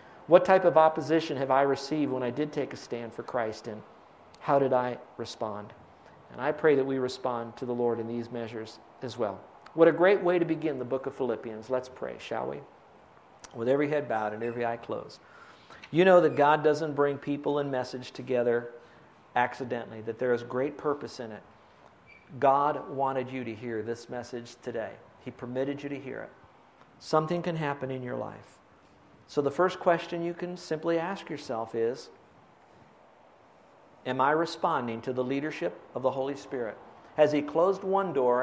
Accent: American